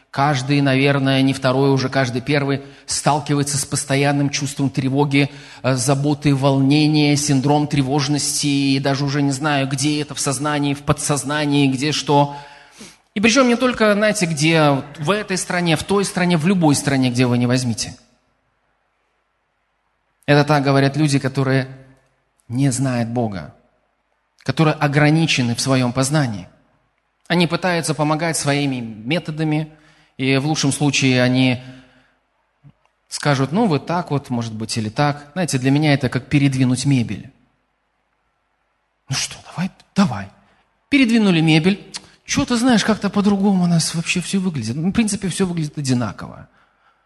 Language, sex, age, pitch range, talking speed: Russian, male, 20-39, 135-170 Hz, 140 wpm